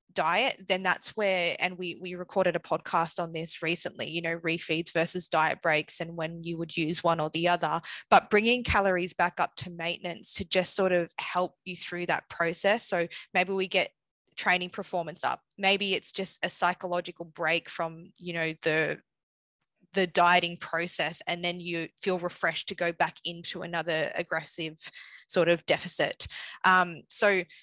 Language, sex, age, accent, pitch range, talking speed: English, female, 20-39, Australian, 165-185 Hz, 175 wpm